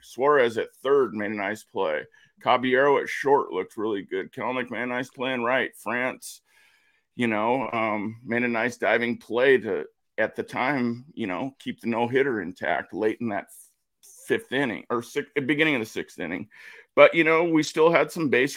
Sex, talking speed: male, 185 wpm